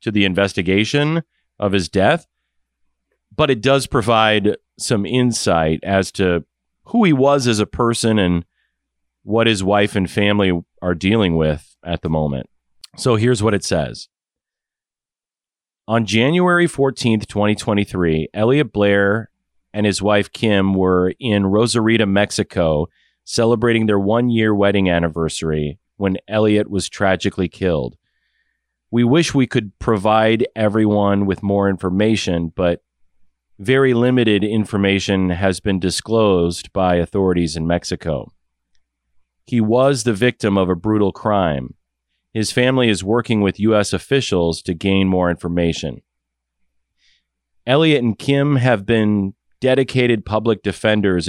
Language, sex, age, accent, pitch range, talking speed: English, male, 30-49, American, 85-115 Hz, 125 wpm